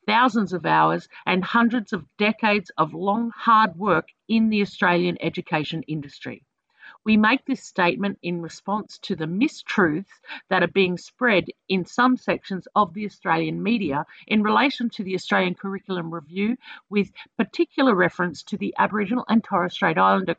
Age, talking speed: 50-69, 155 wpm